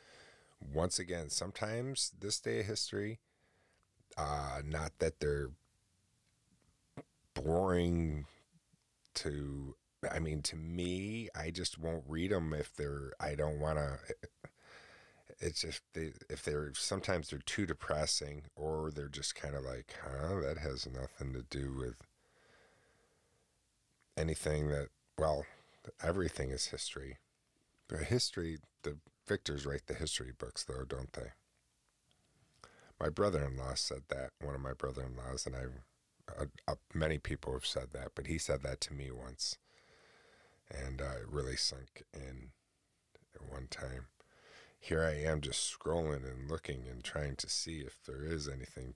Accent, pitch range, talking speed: American, 70-85 Hz, 140 wpm